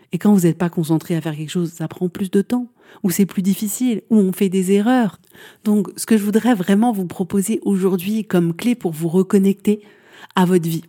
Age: 40-59